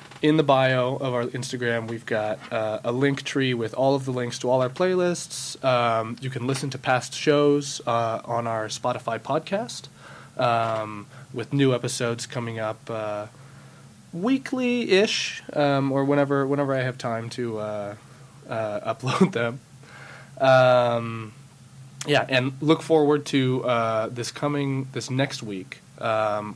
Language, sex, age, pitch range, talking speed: English, male, 20-39, 115-140 Hz, 150 wpm